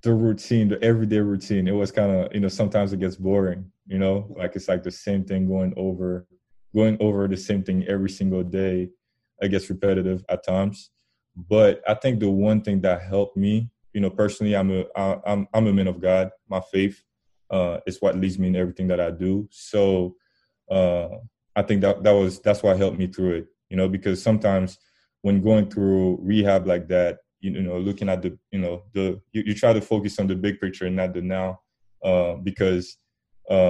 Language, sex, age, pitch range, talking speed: English, male, 20-39, 95-105 Hz, 210 wpm